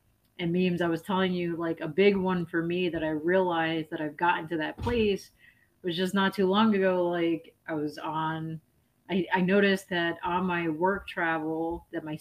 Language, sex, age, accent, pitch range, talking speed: English, female, 30-49, American, 155-190 Hz, 200 wpm